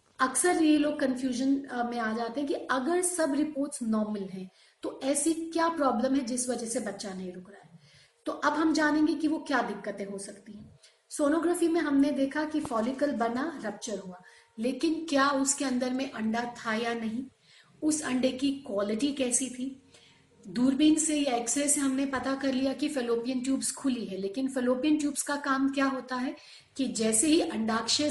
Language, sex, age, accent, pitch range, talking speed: Hindi, female, 40-59, native, 235-280 Hz, 190 wpm